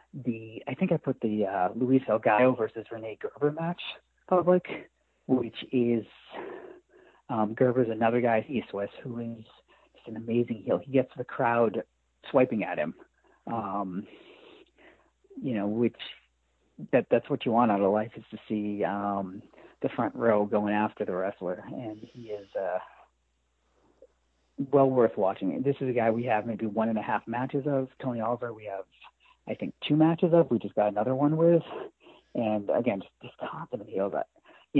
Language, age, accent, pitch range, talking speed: English, 40-59, American, 110-140 Hz, 170 wpm